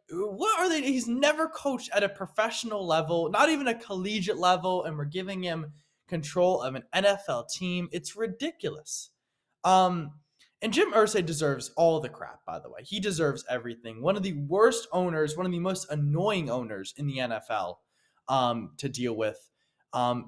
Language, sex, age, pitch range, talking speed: English, male, 20-39, 140-195 Hz, 175 wpm